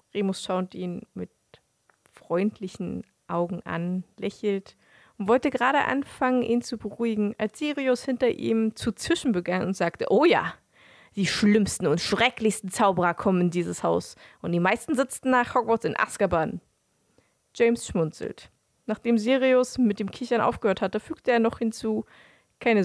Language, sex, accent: German, female, German